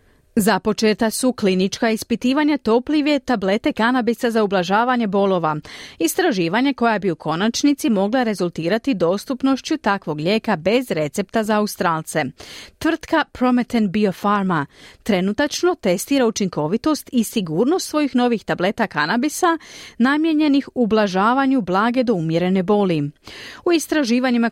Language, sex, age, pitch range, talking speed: Croatian, female, 30-49, 185-260 Hz, 110 wpm